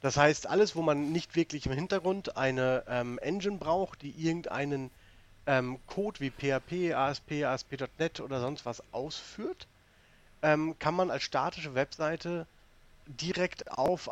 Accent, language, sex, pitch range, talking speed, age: German, German, male, 120-155 Hz, 140 wpm, 40-59